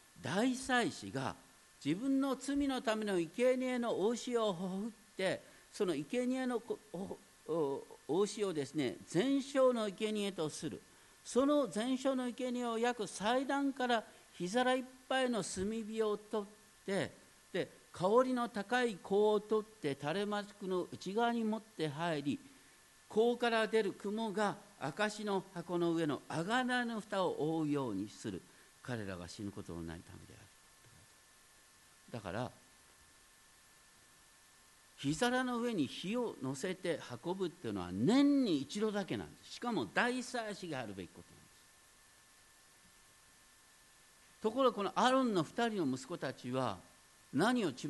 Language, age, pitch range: Japanese, 50-69, 155-245 Hz